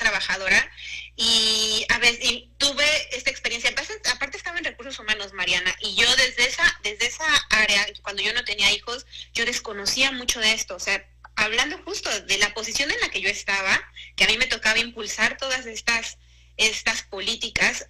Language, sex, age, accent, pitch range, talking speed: Spanish, female, 30-49, Mexican, 210-275 Hz, 180 wpm